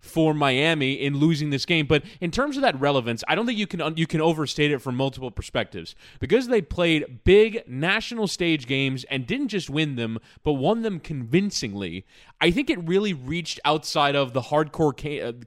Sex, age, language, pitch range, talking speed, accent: male, 20-39, English, 135-175 Hz, 190 wpm, American